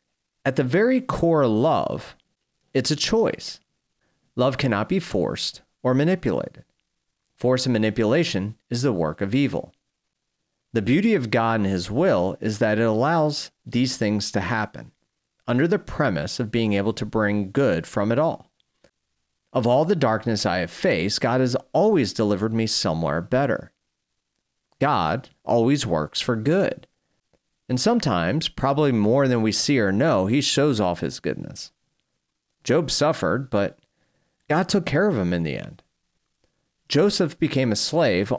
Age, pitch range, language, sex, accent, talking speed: 40-59, 105-145 Hz, English, male, American, 150 wpm